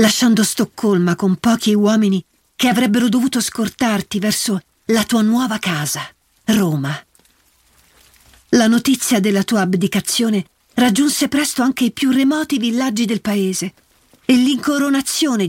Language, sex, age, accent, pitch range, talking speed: Italian, female, 50-69, native, 185-245 Hz, 120 wpm